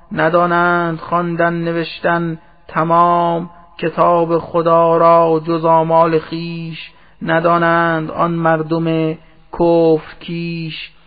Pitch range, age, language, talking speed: 165-170 Hz, 30-49, Persian, 75 wpm